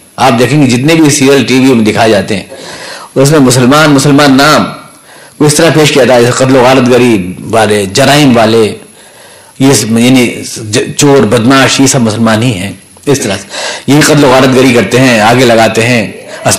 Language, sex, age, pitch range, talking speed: Urdu, male, 50-69, 115-155 Hz, 195 wpm